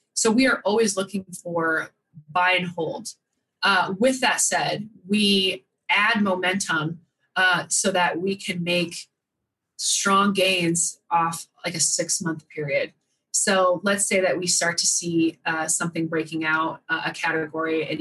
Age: 20-39